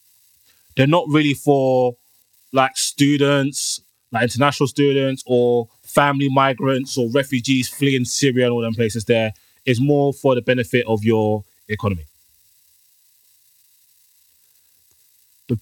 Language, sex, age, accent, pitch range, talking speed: English, male, 20-39, British, 110-140 Hz, 115 wpm